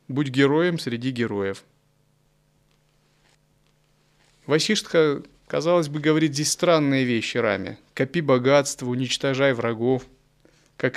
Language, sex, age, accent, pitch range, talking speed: Russian, male, 30-49, native, 130-160 Hz, 95 wpm